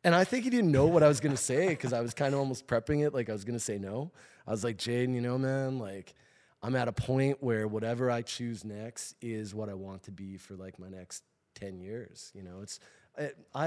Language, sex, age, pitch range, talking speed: English, male, 20-39, 105-145 Hz, 260 wpm